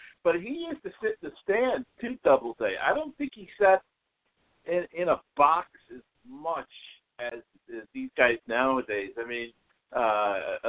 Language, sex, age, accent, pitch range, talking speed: English, male, 60-79, American, 130-195 Hz, 165 wpm